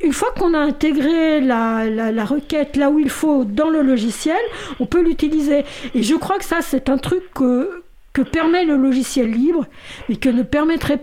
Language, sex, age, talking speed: French, female, 50-69, 200 wpm